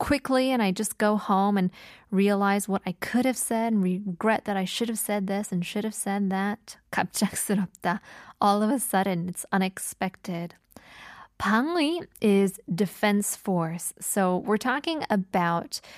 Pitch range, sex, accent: 185-225 Hz, female, American